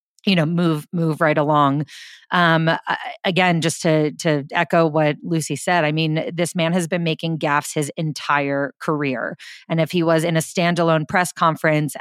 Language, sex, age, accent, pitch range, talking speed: English, female, 30-49, American, 150-170 Hz, 175 wpm